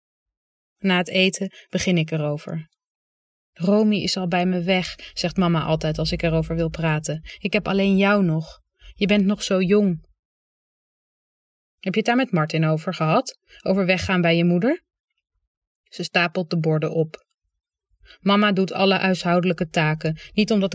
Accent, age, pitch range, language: Dutch, 20-39, 160-210 Hz, Dutch